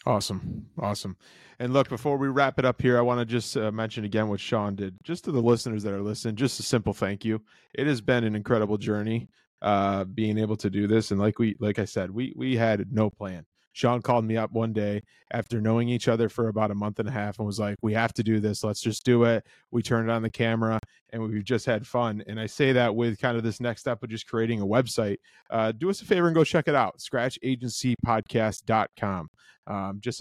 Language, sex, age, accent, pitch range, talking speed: English, male, 20-39, American, 105-120 Hz, 240 wpm